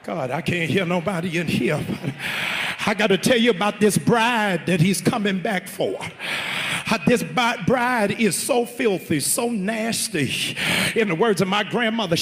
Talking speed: 160 wpm